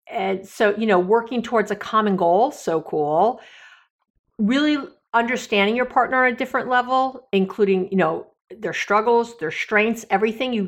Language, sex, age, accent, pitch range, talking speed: English, female, 50-69, American, 195-255 Hz, 155 wpm